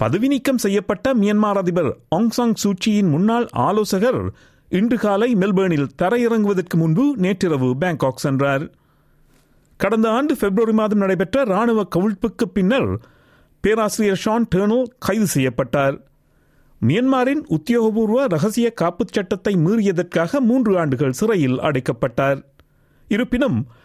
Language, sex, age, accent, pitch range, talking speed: Tamil, male, 50-69, native, 155-225 Hz, 105 wpm